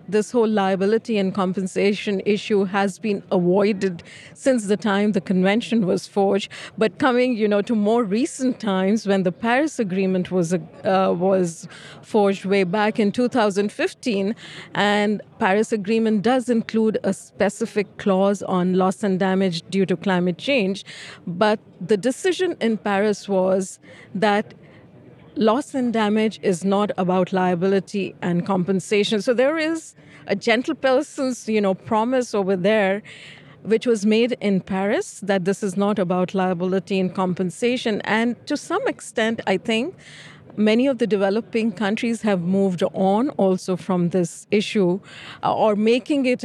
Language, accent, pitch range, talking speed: English, Indian, 190-220 Hz, 145 wpm